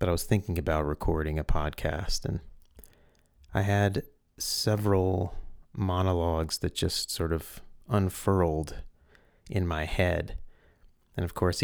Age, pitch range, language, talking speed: 30-49, 80-90 Hz, English, 125 wpm